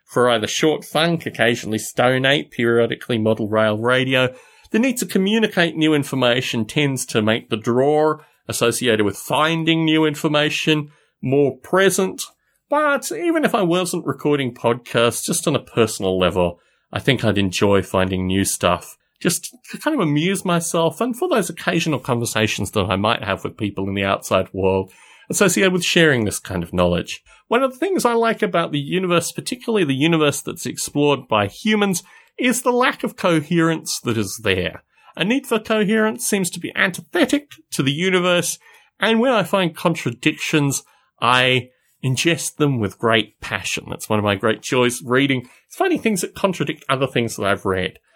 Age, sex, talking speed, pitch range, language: 30-49, male, 170 wpm, 110-185 Hz, English